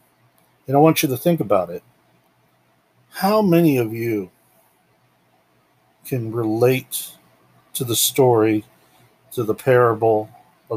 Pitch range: 110-130 Hz